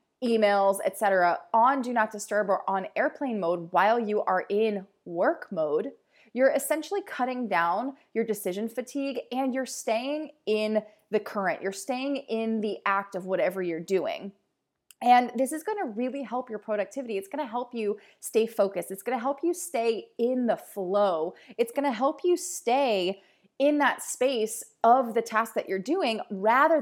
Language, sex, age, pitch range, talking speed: English, female, 20-39, 200-260 Hz, 180 wpm